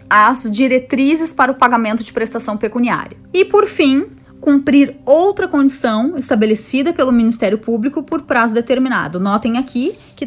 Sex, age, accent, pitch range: female, 20-39, Brazilian, 215-275 Hz